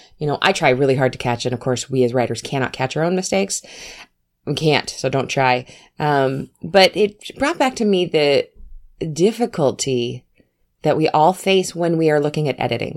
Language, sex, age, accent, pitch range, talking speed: English, female, 20-39, American, 125-170 Hz, 200 wpm